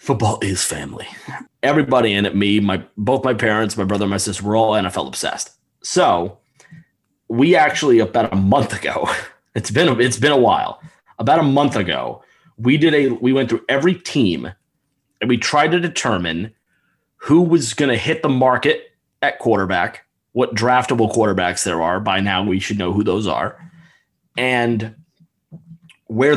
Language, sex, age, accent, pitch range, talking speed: English, male, 30-49, American, 105-145 Hz, 170 wpm